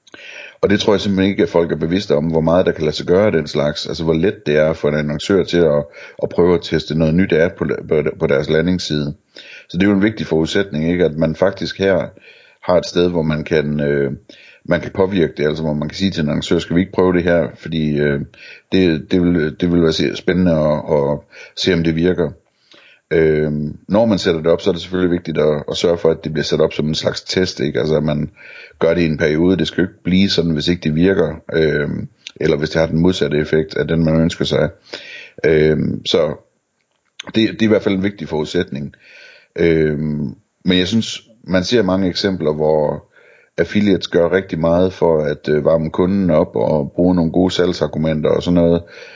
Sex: male